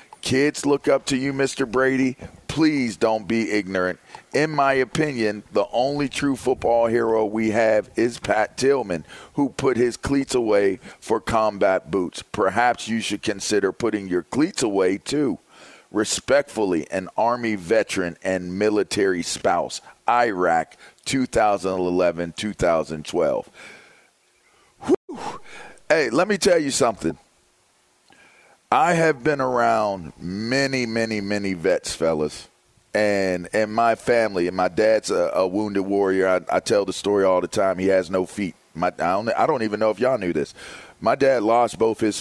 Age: 40-59